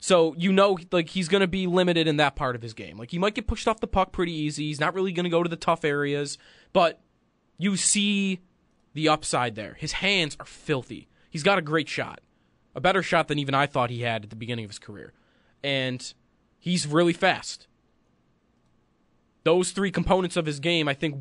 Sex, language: male, English